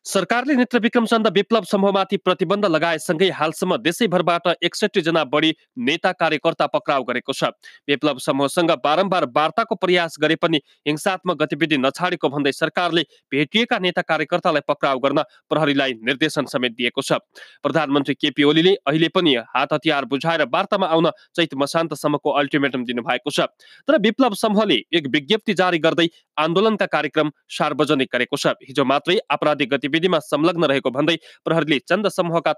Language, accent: English, Indian